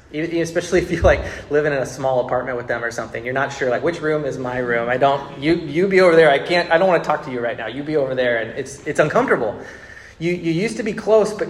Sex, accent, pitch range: male, American, 130-165 Hz